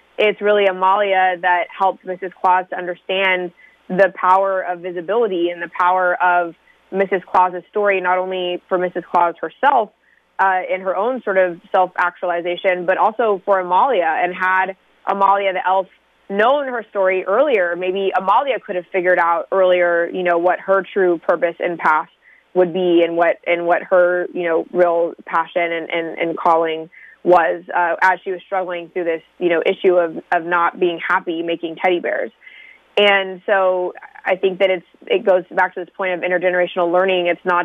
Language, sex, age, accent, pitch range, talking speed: English, female, 20-39, American, 175-190 Hz, 180 wpm